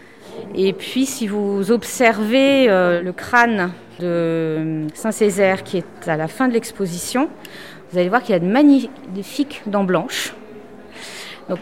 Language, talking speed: French, 145 wpm